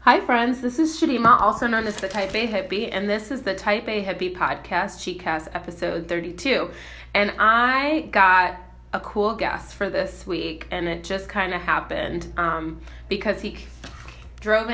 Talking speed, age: 170 wpm, 20-39